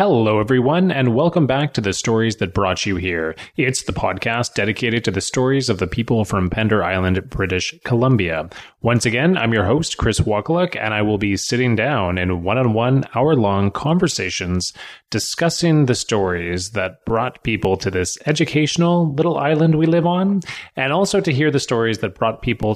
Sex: male